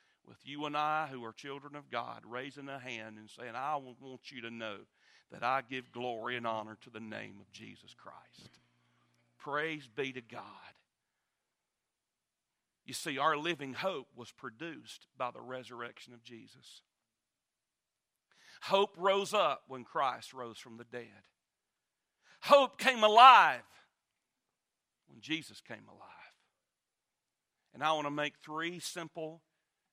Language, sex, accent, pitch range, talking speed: English, male, American, 120-150 Hz, 140 wpm